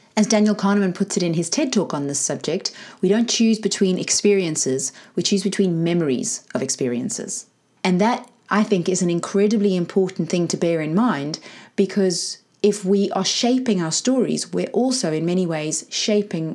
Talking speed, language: 180 wpm, English